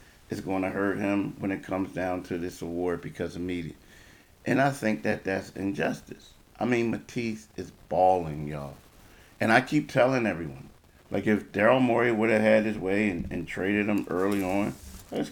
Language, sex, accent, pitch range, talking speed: English, male, American, 90-110 Hz, 190 wpm